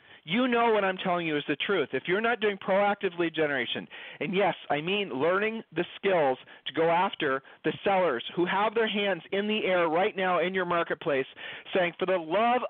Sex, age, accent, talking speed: male, 40-59, American, 210 wpm